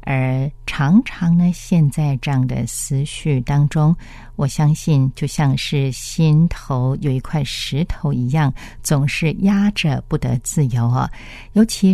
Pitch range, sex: 130-160 Hz, female